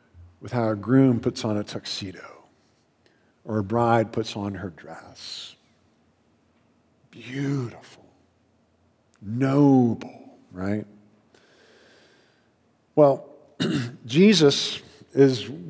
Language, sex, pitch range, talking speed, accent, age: English, male, 115-150 Hz, 80 wpm, American, 50-69